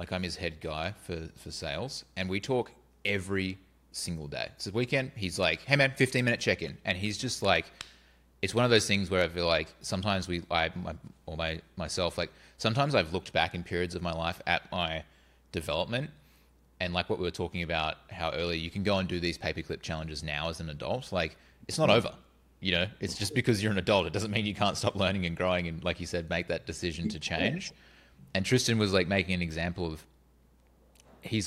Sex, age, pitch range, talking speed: male, 20-39, 80-100 Hz, 225 wpm